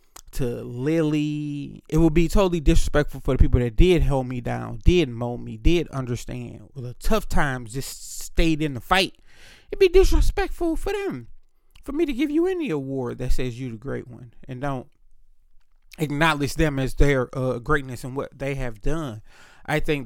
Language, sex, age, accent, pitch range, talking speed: English, male, 20-39, American, 125-180 Hz, 185 wpm